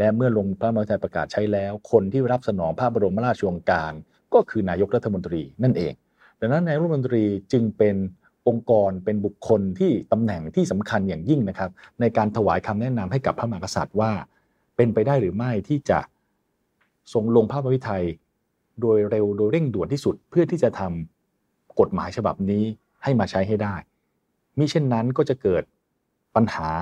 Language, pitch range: English, 100-125 Hz